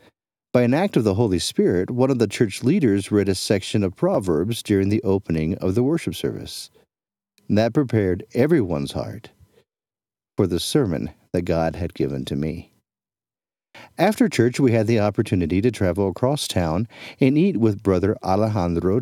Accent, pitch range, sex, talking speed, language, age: American, 95-125 Hz, male, 165 wpm, English, 50-69